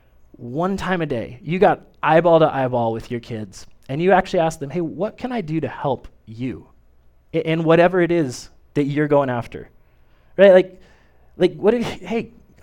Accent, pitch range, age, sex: American, 140-185 Hz, 20-39, male